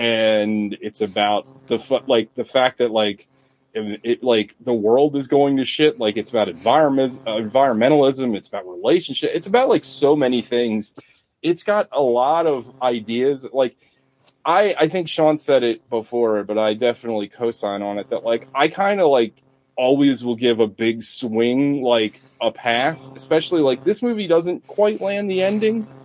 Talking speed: 175 wpm